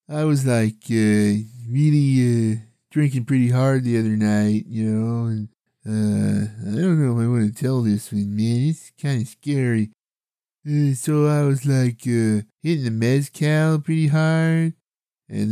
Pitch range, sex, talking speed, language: 110-140 Hz, male, 165 wpm, English